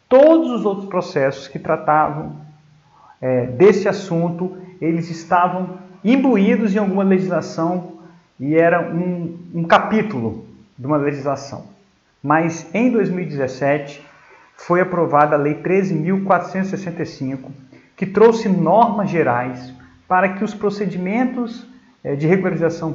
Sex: male